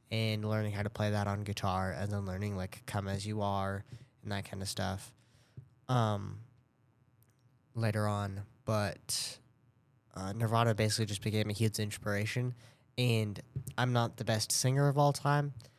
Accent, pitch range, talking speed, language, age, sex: American, 105-125 Hz, 160 wpm, English, 10-29, male